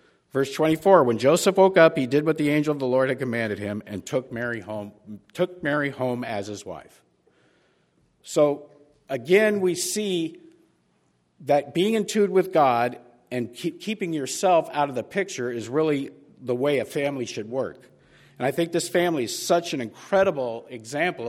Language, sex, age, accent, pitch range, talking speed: English, male, 50-69, American, 115-160 Hz, 180 wpm